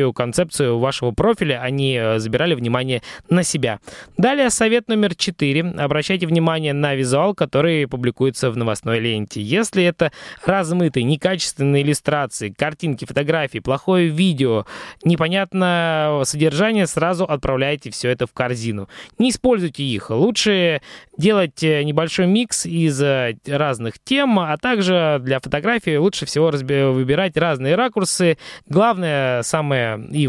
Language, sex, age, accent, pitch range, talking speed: Russian, male, 20-39, native, 135-185 Hz, 120 wpm